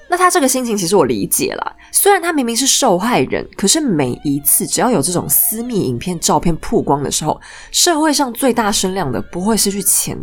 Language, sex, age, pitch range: Chinese, female, 20-39, 175-280 Hz